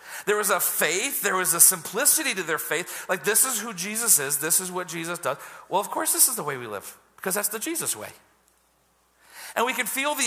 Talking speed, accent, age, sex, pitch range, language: 240 wpm, American, 40-59, male, 160-235 Hz, English